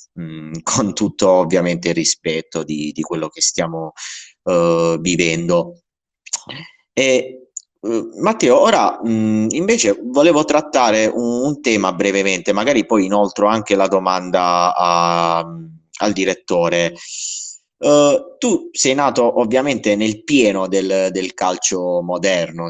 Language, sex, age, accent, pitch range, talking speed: Italian, male, 30-49, native, 85-110 Hz, 105 wpm